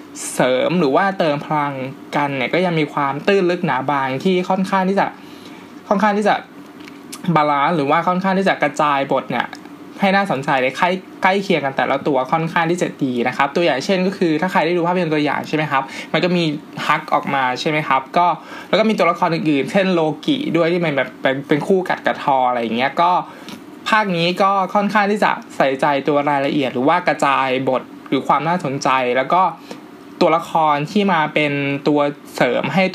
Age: 20-39